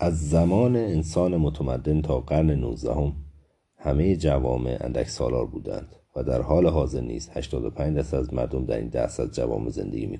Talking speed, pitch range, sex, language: 160 wpm, 65-80 Hz, male, Persian